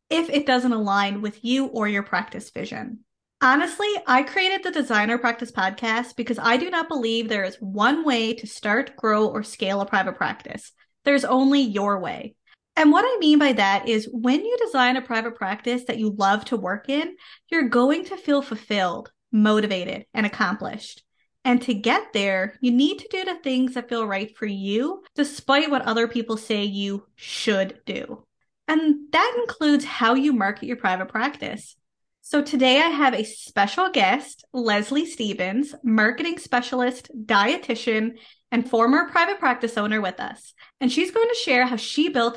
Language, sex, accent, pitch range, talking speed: English, female, American, 215-285 Hz, 175 wpm